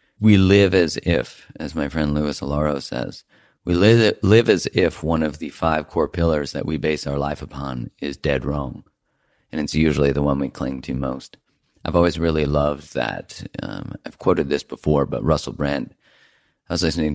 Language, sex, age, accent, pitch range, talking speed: English, male, 40-59, American, 70-85 Hz, 195 wpm